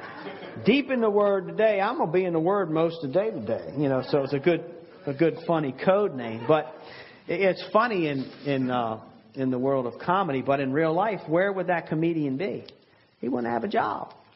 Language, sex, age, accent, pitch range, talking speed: English, male, 40-59, American, 135-185 Hz, 220 wpm